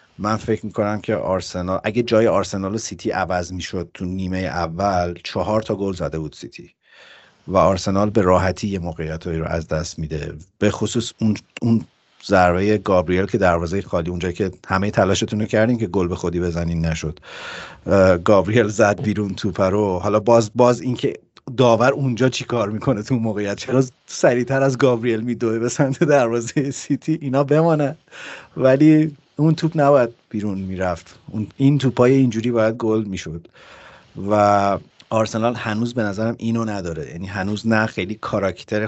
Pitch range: 90-115 Hz